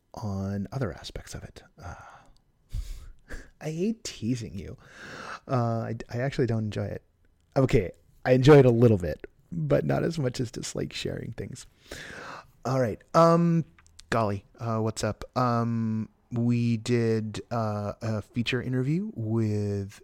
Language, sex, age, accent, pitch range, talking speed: English, male, 30-49, American, 95-120 Hz, 140 wpm